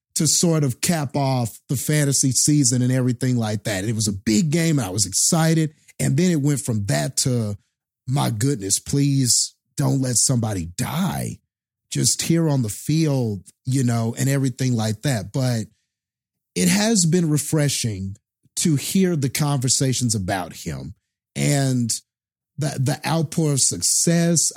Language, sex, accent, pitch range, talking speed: English, male, American, 120-150 Hz, 155 wpm